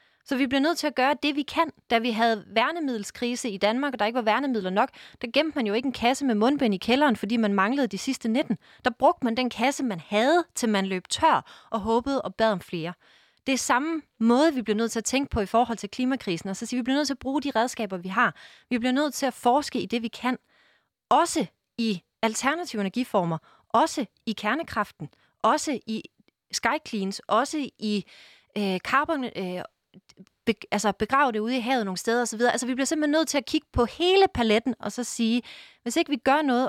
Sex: female